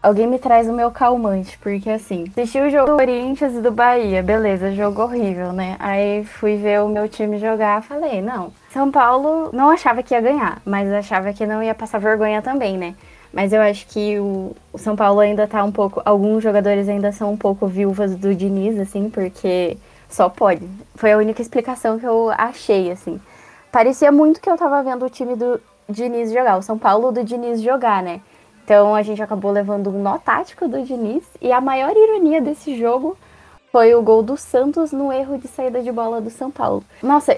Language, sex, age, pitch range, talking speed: Portuguese, female, 10-29, 205-255 Hz, 205 wpm